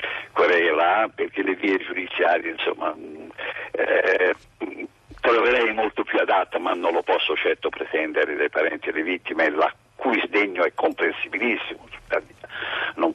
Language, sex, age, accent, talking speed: Italian, male, 60-79, native, 130 wpm